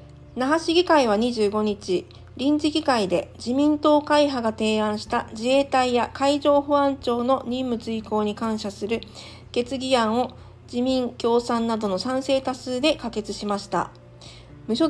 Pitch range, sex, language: 210-270 Hz, female, Japanese